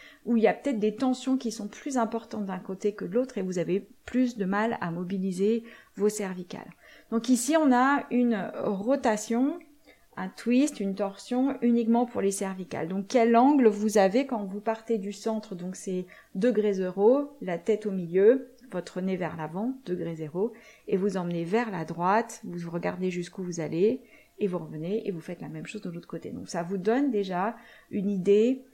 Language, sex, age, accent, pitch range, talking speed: French, female, 30-49, French, 195-235 Hz, 195 wpm